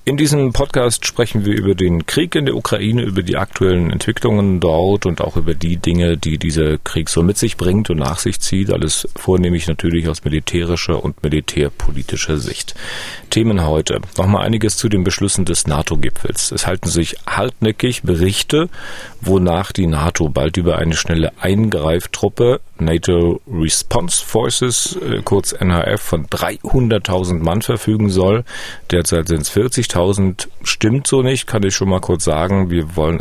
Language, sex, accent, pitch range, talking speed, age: German, male, German, 85-110 Hz, 160 wpm, 40-59